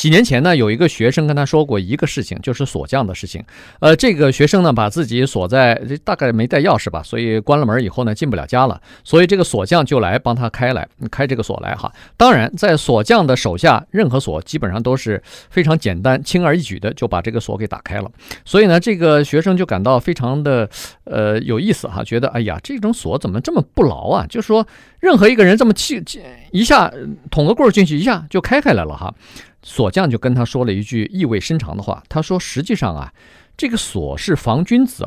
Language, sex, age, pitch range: Chinese, male, 50-69, 115-180 Hz